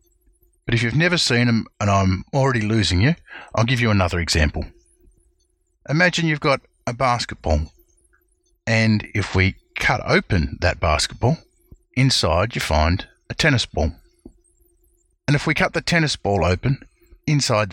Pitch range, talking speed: 95-150 Hz, 145 wpm